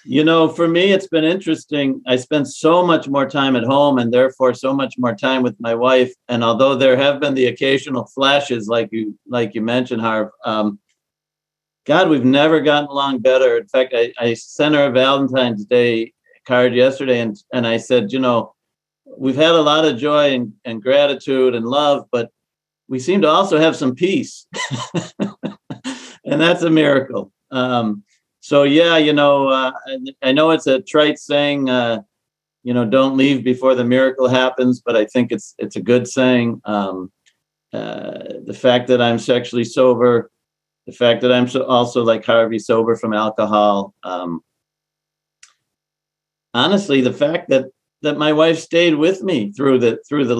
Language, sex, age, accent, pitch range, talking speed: English, male, 50-69, American, 120-145 Hz, 175 wpm